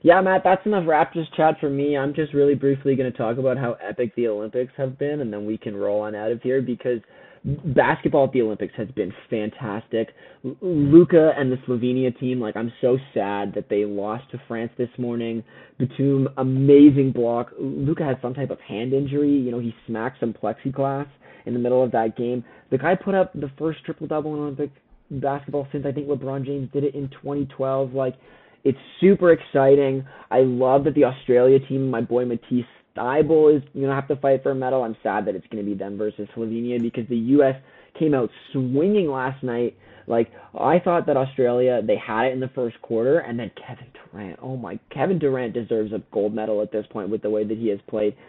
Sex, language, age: male, English, 20-39